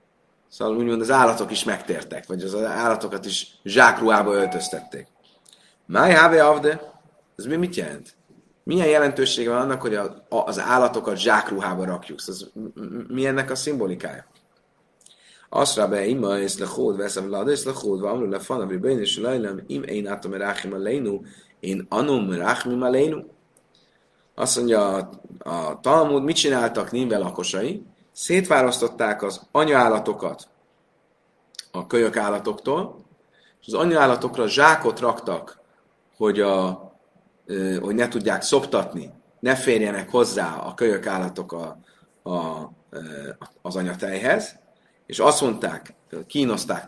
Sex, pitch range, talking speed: male, 100-145 Hz, 120 wpm